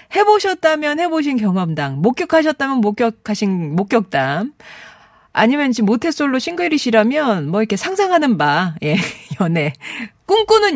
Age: 40-59